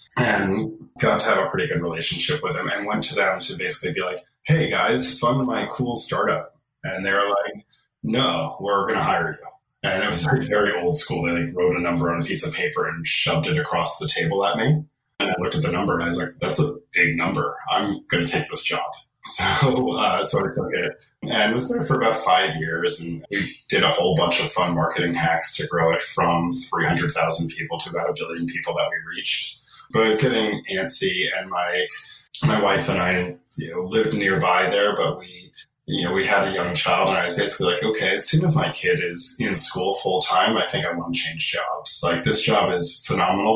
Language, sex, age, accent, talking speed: English, male, 30-49, American, 235 wpm